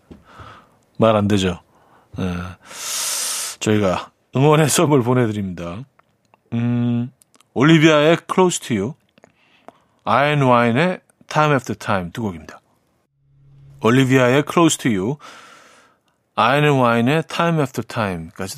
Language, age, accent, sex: Korean, 40-59, native, male